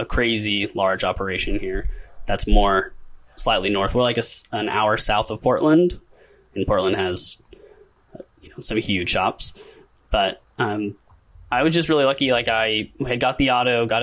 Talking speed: 170 wpm